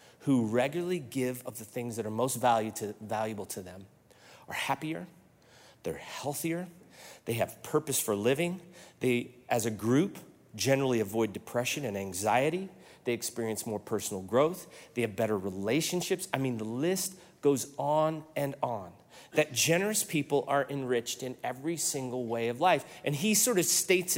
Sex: male